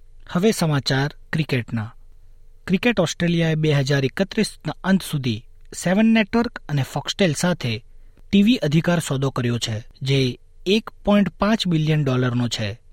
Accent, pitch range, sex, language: native, 120-175 Hz, male, Gujarati